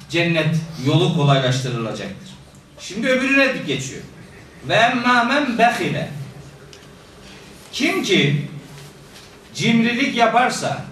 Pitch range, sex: 160-225 Hz, male